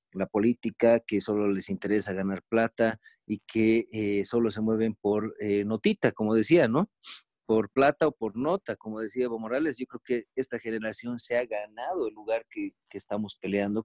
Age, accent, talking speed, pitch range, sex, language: 40-59, Mexican, 185 wpm, 105-120 Hz, male, Spanish